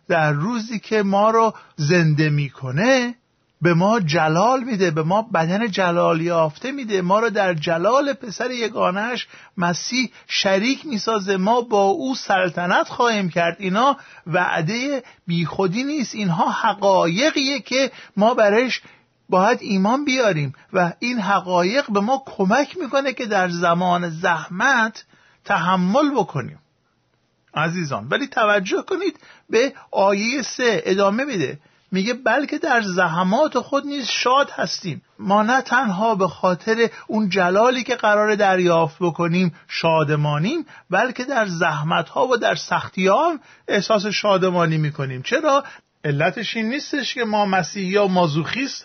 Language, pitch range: Persian, 175-245 Hz